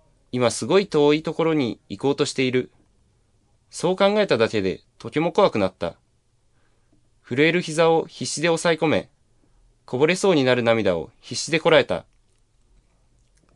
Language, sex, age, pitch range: Chinese, male, 20-39, 115-150 Hz